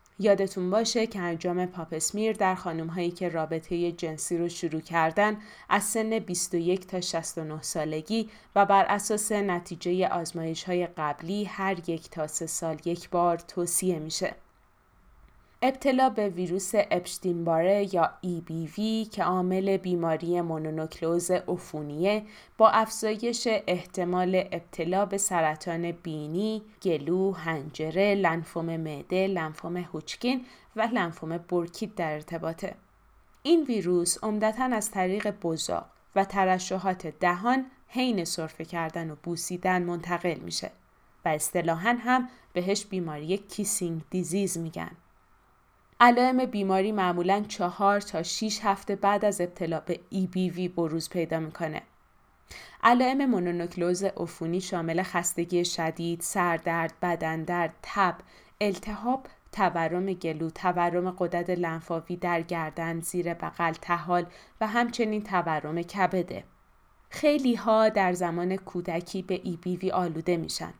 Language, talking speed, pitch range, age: Persian, 120 wpm, 170-200 Hz, 20-39